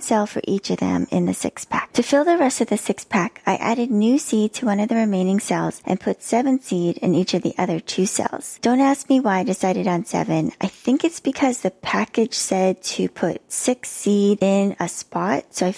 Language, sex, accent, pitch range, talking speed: English, female, American, 180-230 Hz, 235 wpm